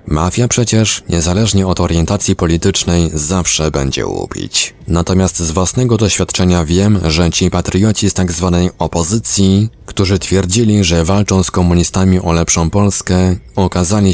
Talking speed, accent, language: 130 wpm, native, Polish